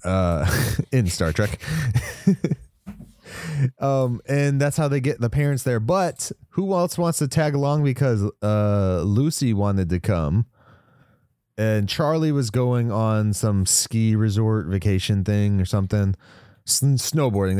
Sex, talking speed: male, 135 wpm